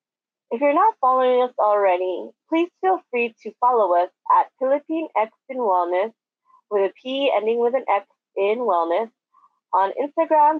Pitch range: 195-260 Hz